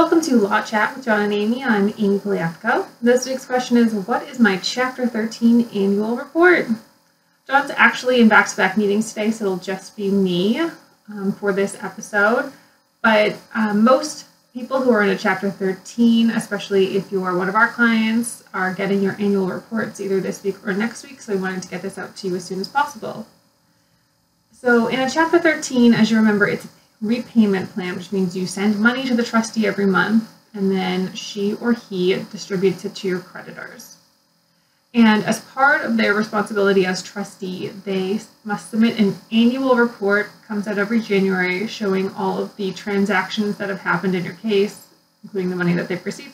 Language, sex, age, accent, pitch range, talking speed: English, female, 30-49, American, 195-235 Hz, 190 wpm